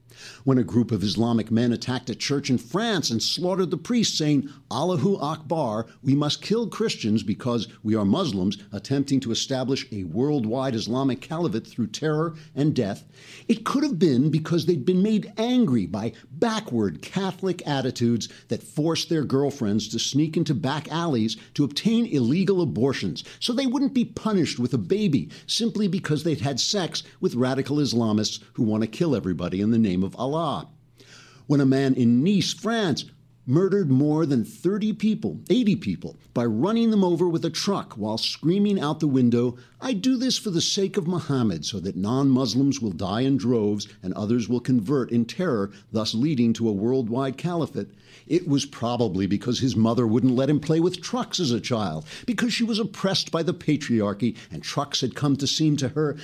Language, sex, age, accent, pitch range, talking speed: English, male, 50-69, American, 120-180 Hz, 185 wpm